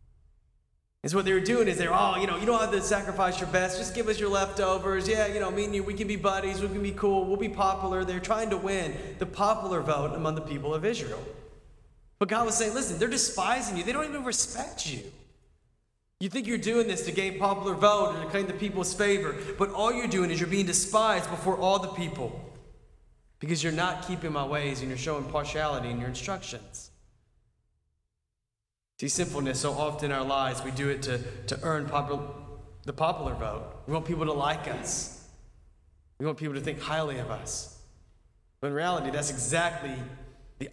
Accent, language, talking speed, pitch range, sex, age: American, English, 210 wpm, 130-190 Hz, male, 20-39